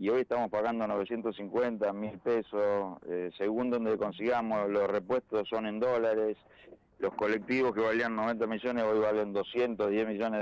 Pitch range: 105-125 Hz